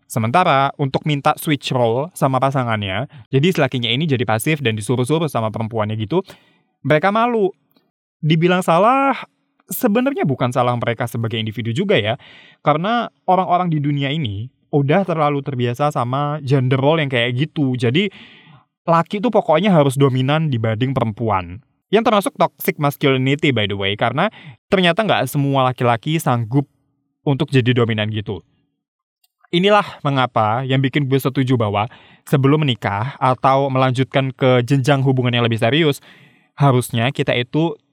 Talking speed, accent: 140 wpm, native